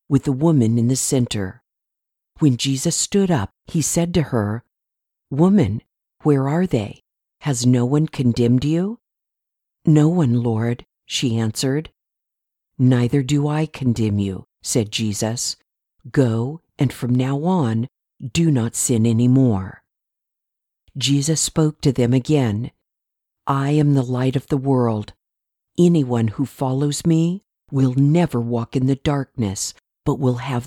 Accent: American